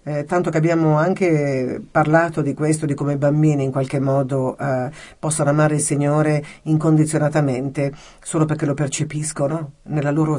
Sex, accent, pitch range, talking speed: female, native, 140-160 Hz, 160 wpm